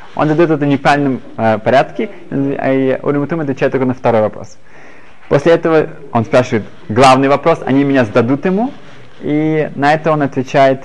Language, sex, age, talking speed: Russian, male, 20-39, 160 wpm